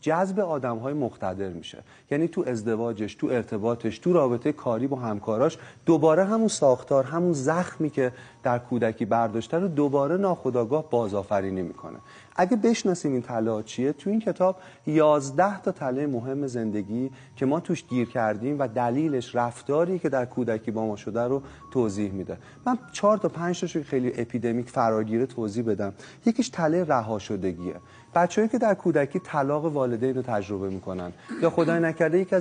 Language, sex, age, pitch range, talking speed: Persian, male, 40-59, 120-165 Hz, 155 wpm